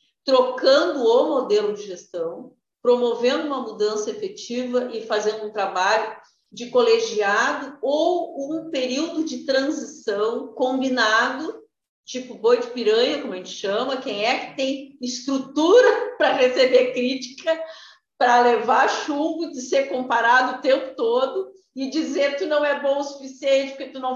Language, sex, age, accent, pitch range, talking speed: Portuguese, female, 50-69, Brazilian, 240-305 Hz, 140 wpm